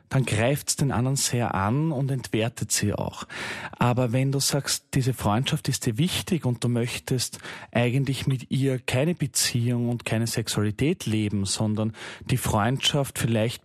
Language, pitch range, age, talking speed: German, 115-145 Hz, 30-49, 155 wpm